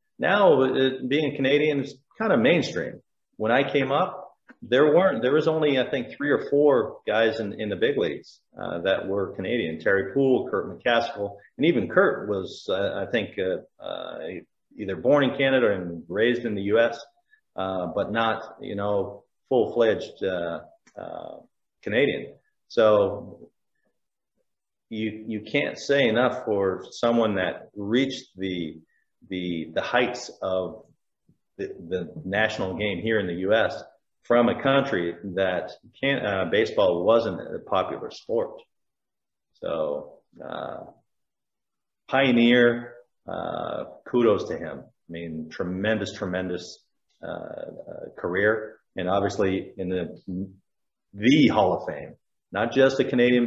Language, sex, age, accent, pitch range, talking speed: English, male, 40-59, American, 100-135 Hz, 140 wpm